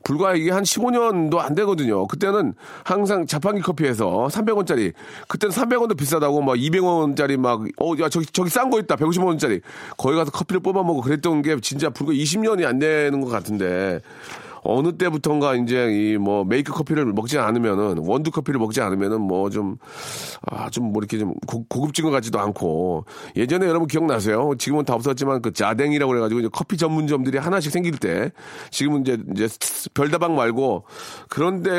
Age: 40-59